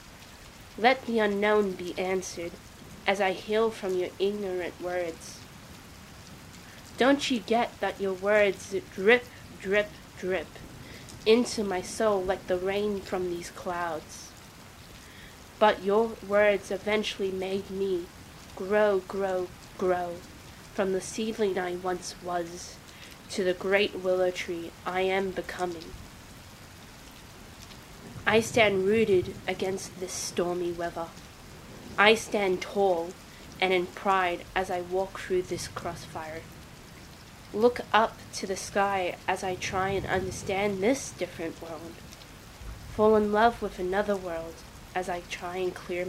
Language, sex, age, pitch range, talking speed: English, female, 20-39, 180-205 Hz, 125 wpm